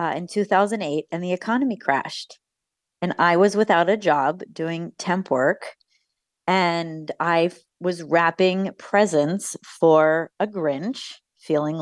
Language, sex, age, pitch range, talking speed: English, female, 30-49, 165-210 Hz, 135 wpm